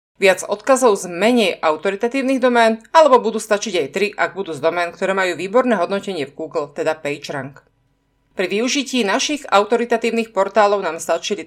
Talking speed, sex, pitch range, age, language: 155 wpm, female, 165-230 Hz, 30-49, Slovak